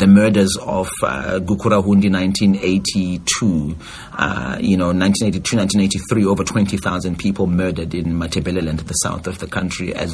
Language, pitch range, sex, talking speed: English, 90-105 Hz, male, 140 wpm